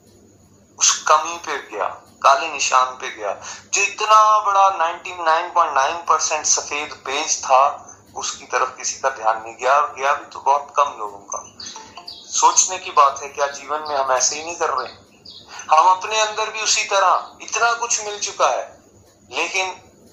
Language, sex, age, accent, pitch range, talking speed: Hindi, male, 30-49, native, 135-185 Hz, 160 wpm